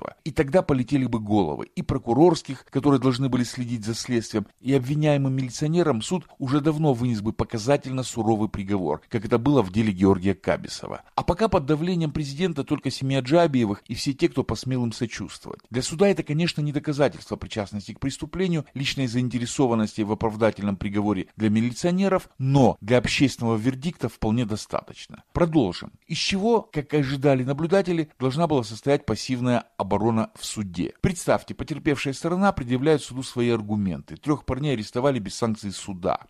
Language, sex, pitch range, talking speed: Russian, male, 110-150 Hz, 155 wpm